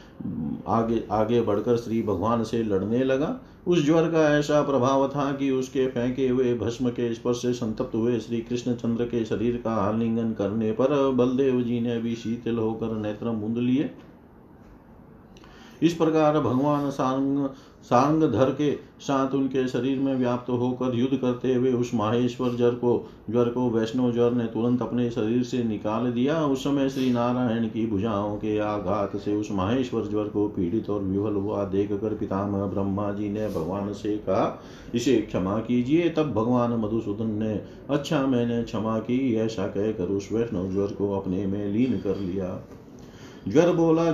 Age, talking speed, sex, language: 50-69, 165 wpm, male, Hindi